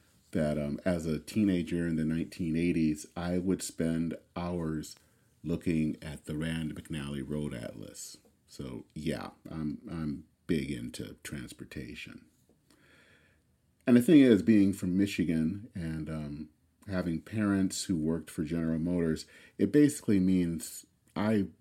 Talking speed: 130 wpm